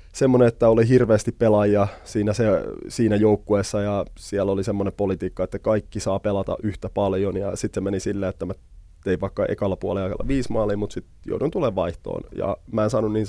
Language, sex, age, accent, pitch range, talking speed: Finnish, male, 20-39, native, 95-110 Hz, 185 wpm